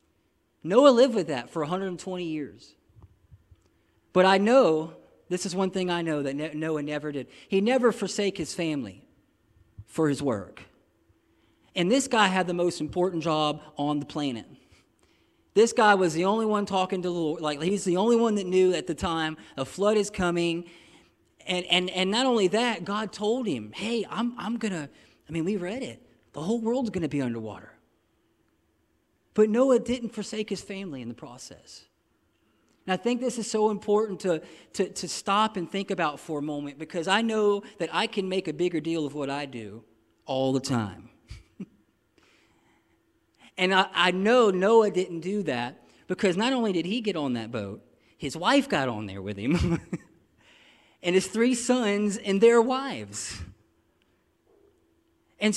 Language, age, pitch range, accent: English, 40-59, 150-215 Hz, American